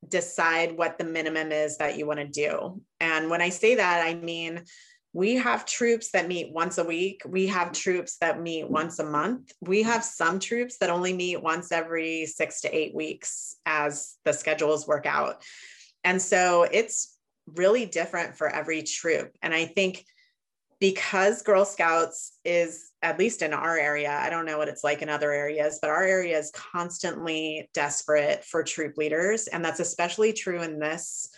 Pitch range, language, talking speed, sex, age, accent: 155-180 Hz, English, 180 wpm, female, 30-49, American